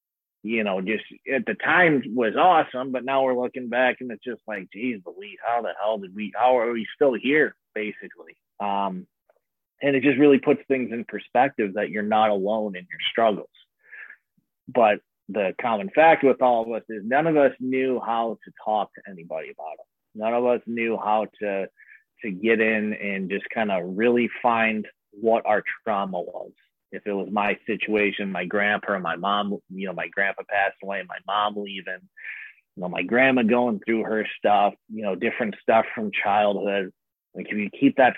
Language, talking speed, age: English, 195 wpm, 30-49